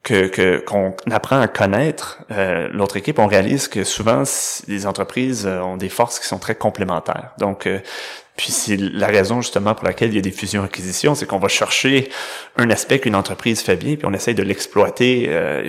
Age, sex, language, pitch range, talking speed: 30-49, male, French, 95-125 Hz, 200 wpm